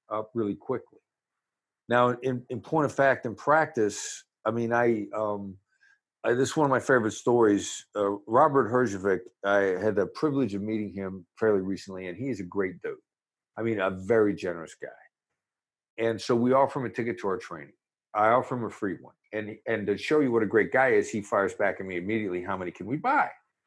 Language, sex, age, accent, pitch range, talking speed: English, male, 50-69, American, 105-155 Hz, 215 wpm